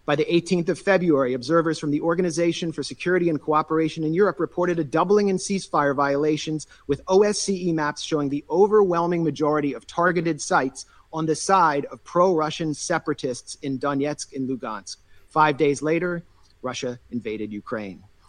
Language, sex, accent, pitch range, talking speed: English, male, American, 140-190 Hz, 155 wpm